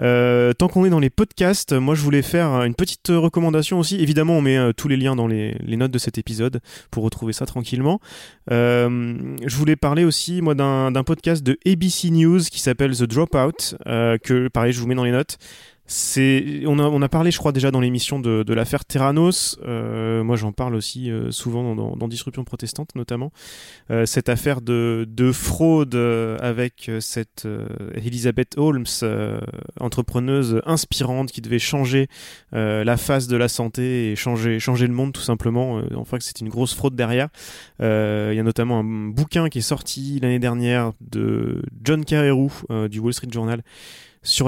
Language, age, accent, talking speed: French, 30-49, French, 195 wpm